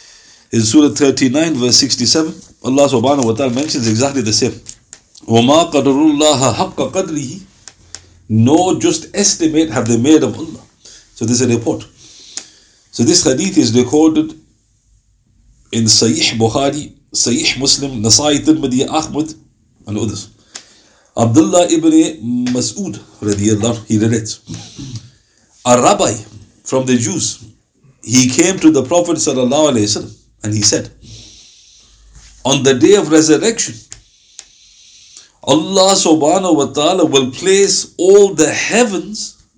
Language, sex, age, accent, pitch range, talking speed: English, male, 50-69, Indian, 110-155 Hz, 115 wpm